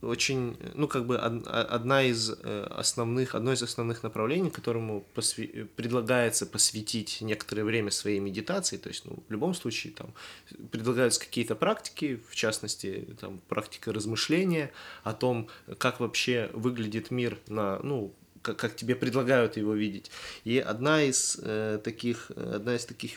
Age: 20-39